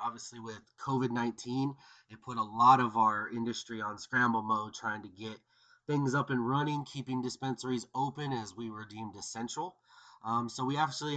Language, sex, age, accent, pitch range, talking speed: English, male, 30-49, American, 115-135 Hz, 170 wpm